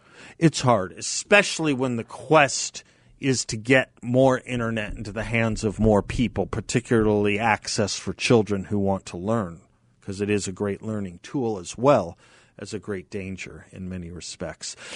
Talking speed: 165 wpm